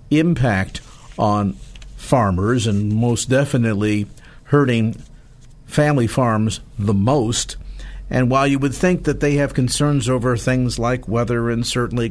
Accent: American